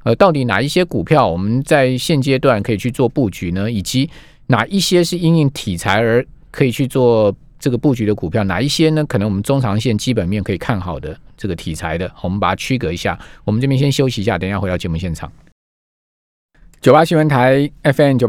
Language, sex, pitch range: Chinese, male, 105-140 Hz